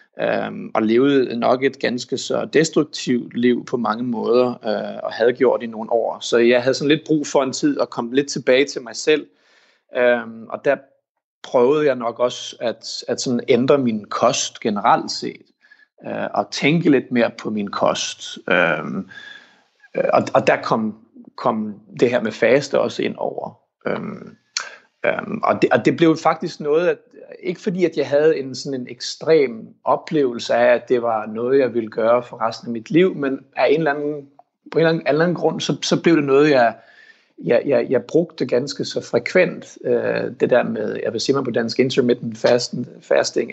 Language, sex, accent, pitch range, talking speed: Danish, male, native, 120-185 Hz, 190 wpm